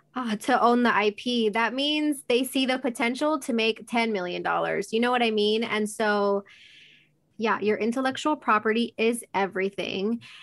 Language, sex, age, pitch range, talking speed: English, female, 20-39, 195-225 Hz, 160 wpm